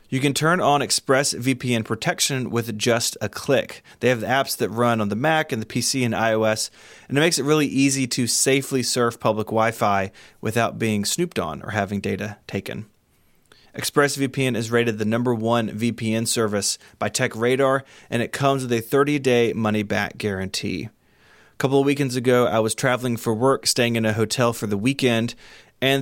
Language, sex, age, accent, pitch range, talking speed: English, male, 30-49, American, 110-135 Hz, 180 wpm